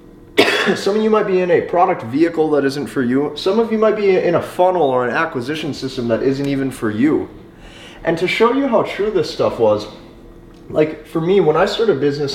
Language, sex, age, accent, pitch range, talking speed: English, male, 30-49, American, 125-165 Hz, 225 wpm